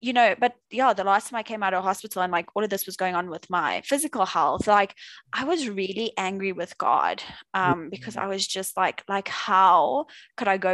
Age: 20-39